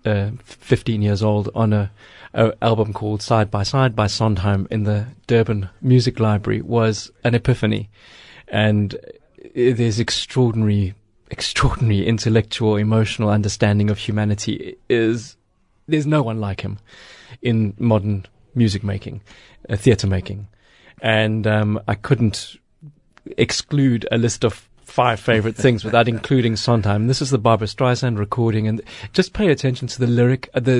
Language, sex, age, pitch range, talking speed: English, male, 30-49, 105-130 Hz, 140 wpm